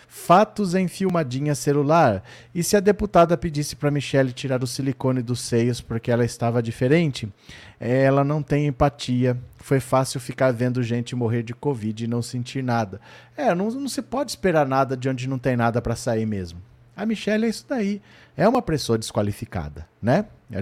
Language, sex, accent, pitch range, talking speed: Portuguese, male, Brazilian, 120-160 Hz, 180 wpm